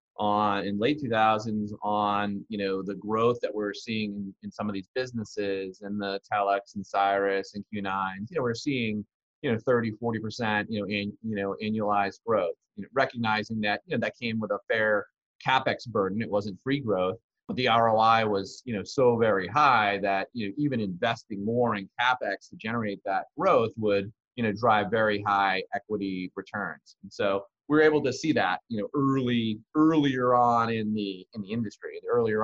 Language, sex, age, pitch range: English, male, 30-49, 100-120 Hz